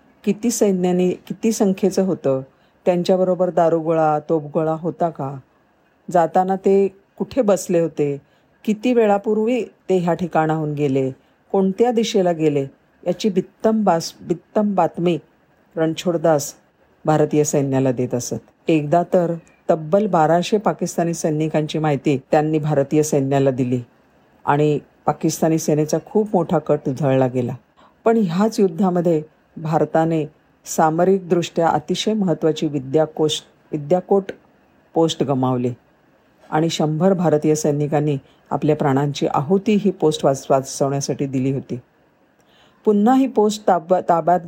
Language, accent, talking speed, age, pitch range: Marathi, native, 105 wpm, 50-69, 150-185 Hz